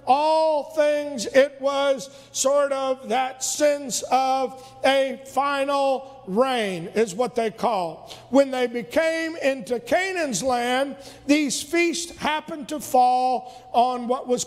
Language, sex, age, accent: English, male, 50-69, American